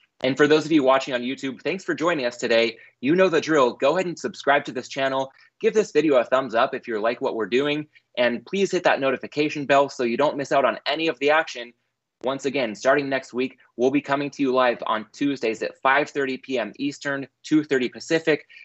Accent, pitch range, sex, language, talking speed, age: American, 125-150 Hz, male, English, 230 wpm, 20-39